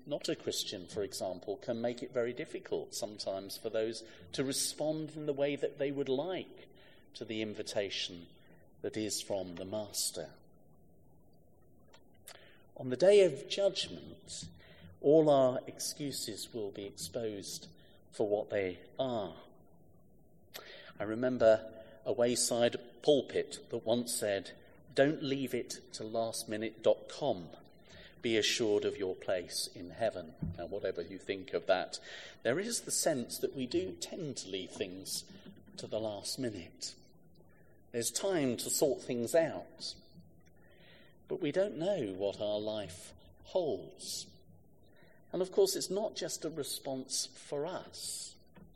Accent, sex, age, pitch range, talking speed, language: British, male, 40-59, 105-155 Hz, 135 wpm, English